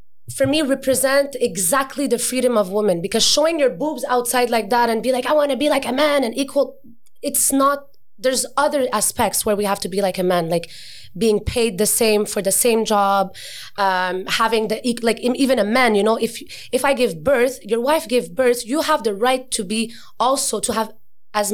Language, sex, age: English, female, 20-39